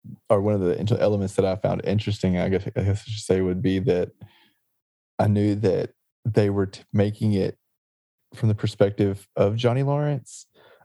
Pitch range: 95-110 Hz